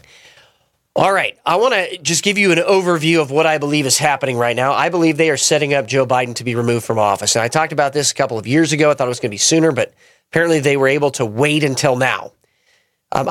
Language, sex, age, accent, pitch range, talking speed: English, male, 30-49, American, 140-190 Hz, 265 wpm